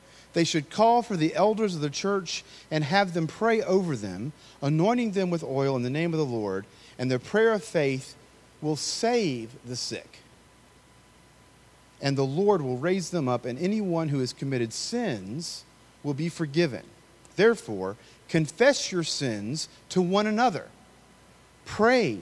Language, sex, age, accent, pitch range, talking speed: English, male, 40-59, American, 125-190 Hz, 155 wpm